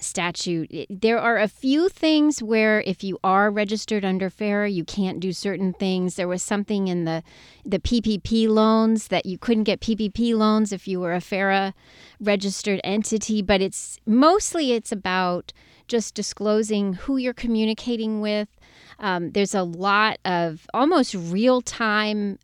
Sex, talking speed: female, 150 wpm